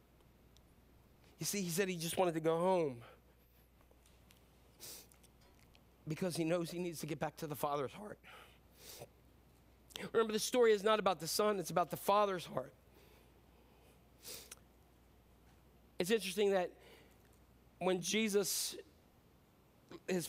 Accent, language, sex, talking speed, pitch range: American, English, male, 120 wpm, 135-215 Hz